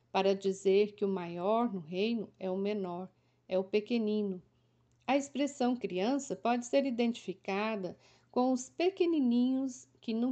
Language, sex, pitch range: Portuguese, female, 200-265 Hz